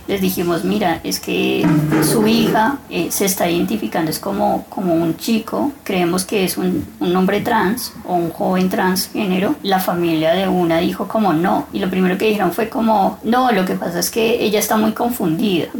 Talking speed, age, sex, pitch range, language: 200 wpm, 20-39, female, 175-220 Hz, Spanish